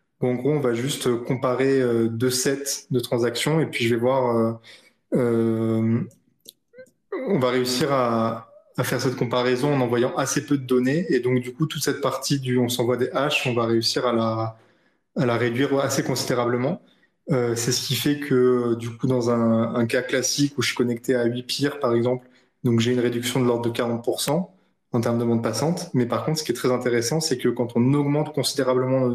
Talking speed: 210 wpm